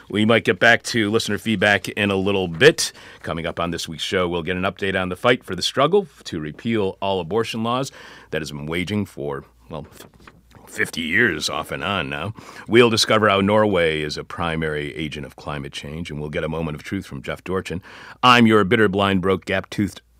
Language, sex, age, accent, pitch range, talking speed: English, male, 40-59, American, 80-100 Hz, 210 wpm